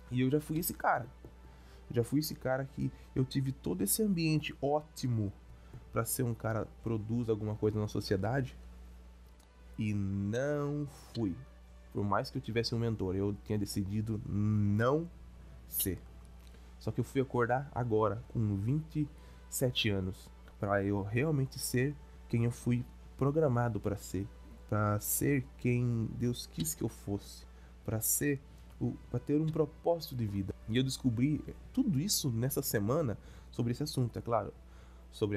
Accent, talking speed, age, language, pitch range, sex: Brazilian, 155 wpm, 20-39, Portuguese, 95-130 Hz, male